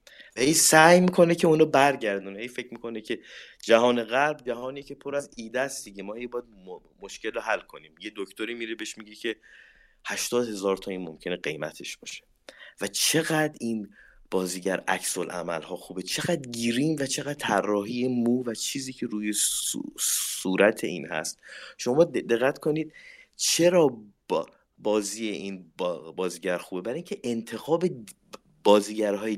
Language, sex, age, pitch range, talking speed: Persian, male, 30-49, 100-140 Hz, 140 wpm